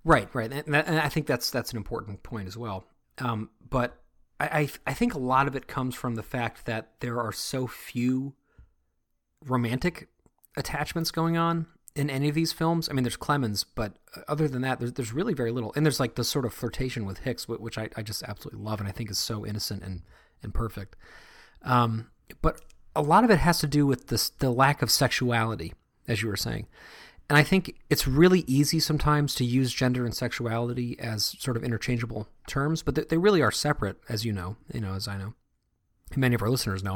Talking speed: 215 wpm